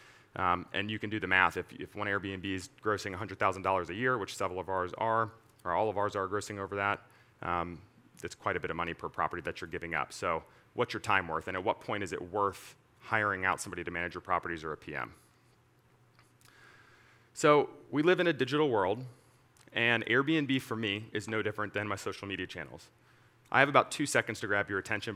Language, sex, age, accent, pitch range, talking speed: English, male, 30-49, American, 100-120 Hz, 220 wpm